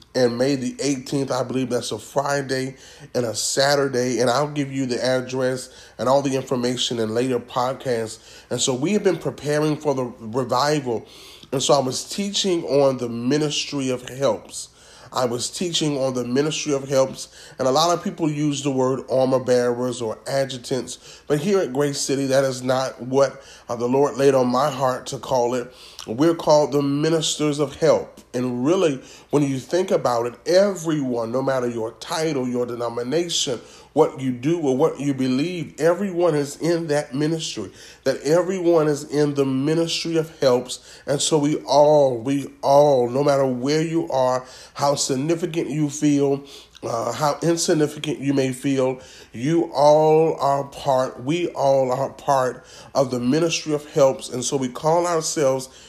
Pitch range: 125-150 Hz